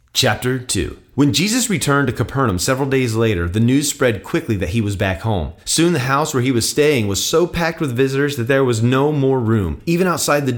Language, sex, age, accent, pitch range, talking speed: English, male, 30-49, American, 110-155 Hz, 225 wpm